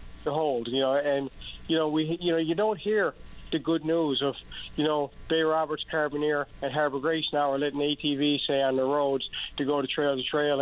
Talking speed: 220 wpm